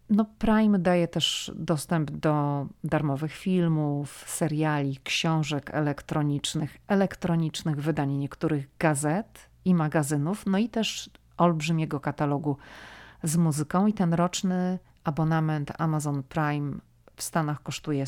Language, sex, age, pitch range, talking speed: Polish, female, 40-59, 140-175 Hz, 110 wpm